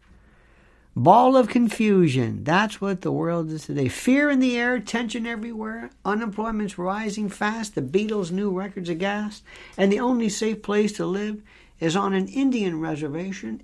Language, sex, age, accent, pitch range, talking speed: English, male, 60-79, American, 165-215 Hz, 160 wpm